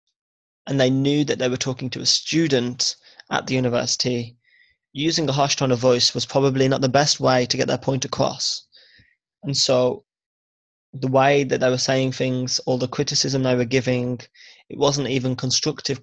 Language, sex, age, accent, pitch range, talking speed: English, male, 20-39, British, 125-140 Hz, 185 wpm